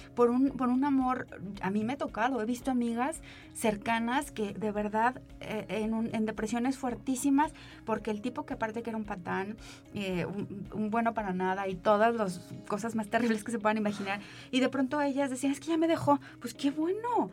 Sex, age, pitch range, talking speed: female, 20-39, 215-260 Hz, 210 wpm